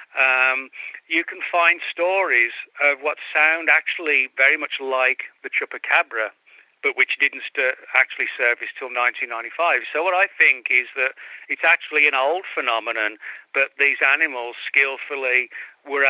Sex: male